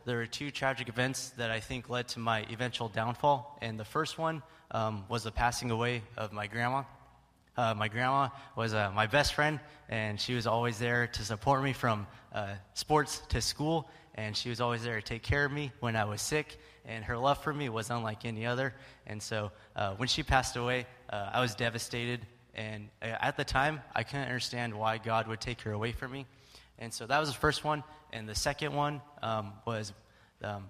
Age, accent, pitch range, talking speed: 20-39, American, 110-135 Hz, 215 wpm